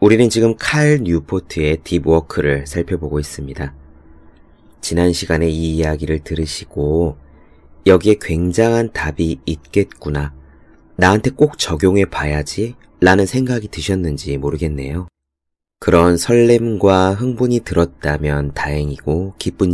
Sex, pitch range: male, 75-95 Hz